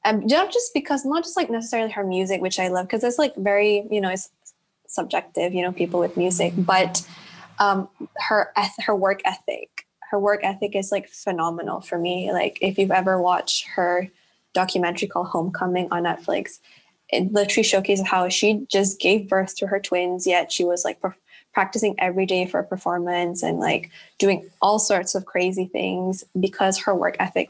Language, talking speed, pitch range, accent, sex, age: English, 190 wpm, 180-205 Hz, American, female, 10-29